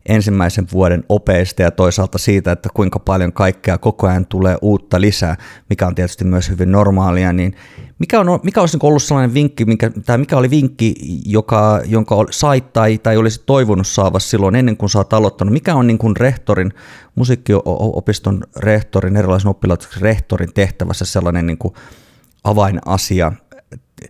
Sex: male